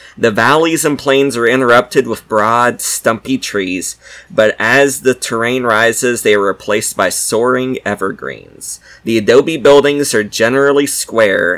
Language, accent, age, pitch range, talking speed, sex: English, American, 20-39, 110-140 Hz, 140 wpm, male